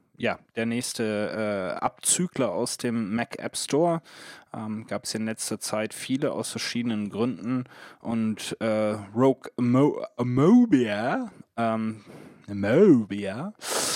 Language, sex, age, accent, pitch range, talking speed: German, male, 20-39, German, 110-130 Hz, 105 wpm